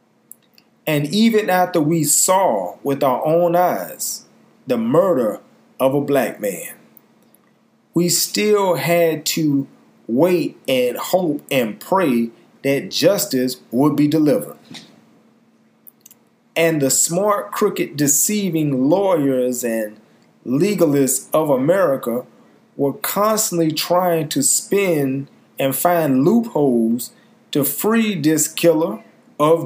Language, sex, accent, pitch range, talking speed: English, male, American, 135-185 Hz, 105 wpm